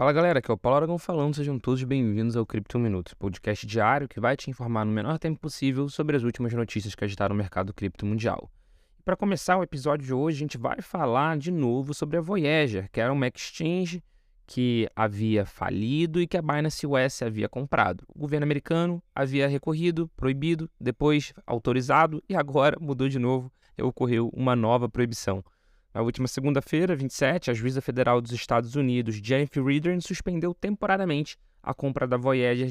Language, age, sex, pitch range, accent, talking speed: Portuguese, 20-39, male, 125-165 Hz, Brazilian, 185 wpm